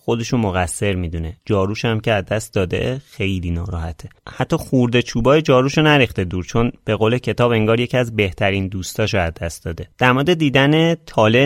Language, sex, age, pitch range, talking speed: Persian, male, 30-49, 95-130 Hz, 170 wpm